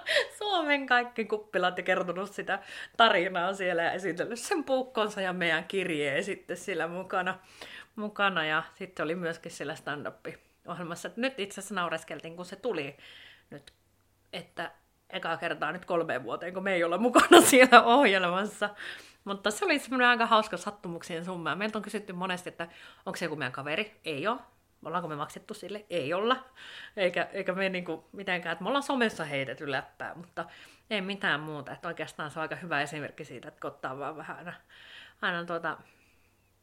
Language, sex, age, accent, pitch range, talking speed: Finnish, female, 30-49, native, 165-210 Hz, 160 wpm